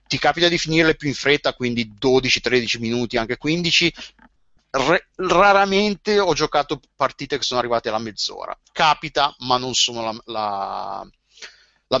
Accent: native